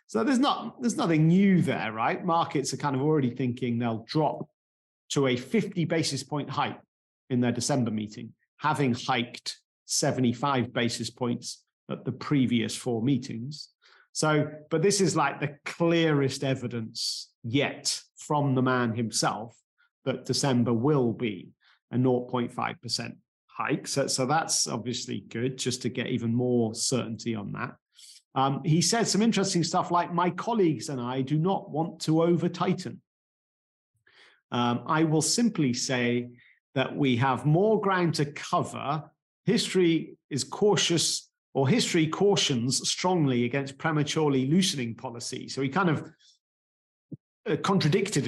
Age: 40-59